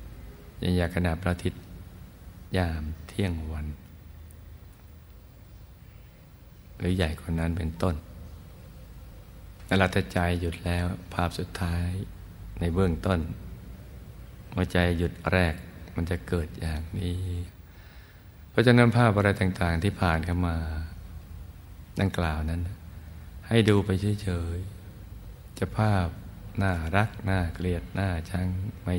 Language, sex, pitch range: Thai, male, 85-100 Hz